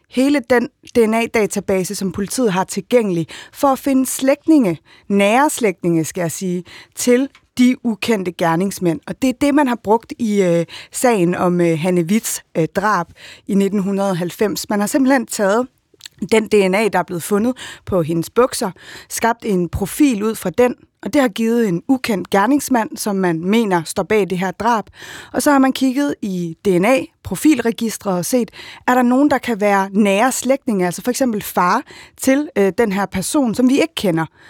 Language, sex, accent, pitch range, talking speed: Danish, female, native, 190-255 Hz, 175 wpm